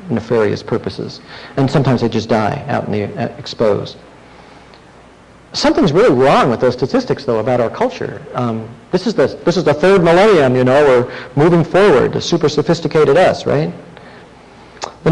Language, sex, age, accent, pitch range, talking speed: English, male, 50-69, American, 125-175 Hz, 155 wpm